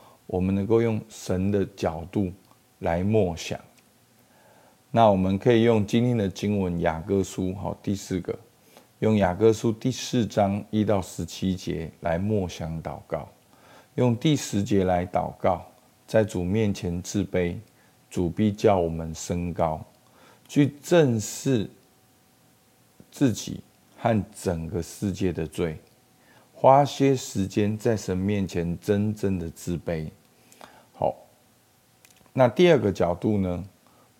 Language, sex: Chinese, male